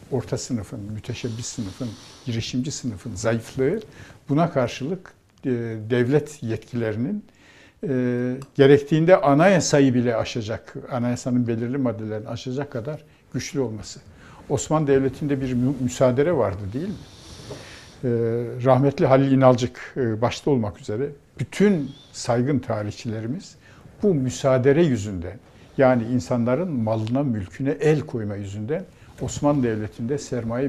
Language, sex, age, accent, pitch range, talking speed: Turkish, male, 60-79, native, 115-140 Hz, 100 wpm